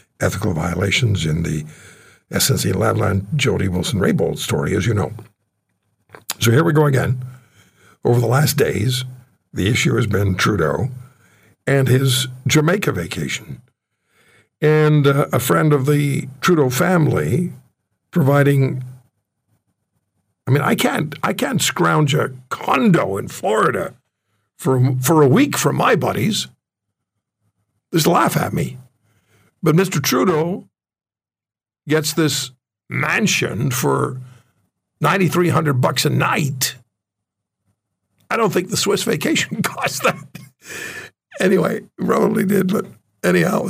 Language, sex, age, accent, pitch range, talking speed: English, male, 60-79, American, 105-150 Hz, 120 wpm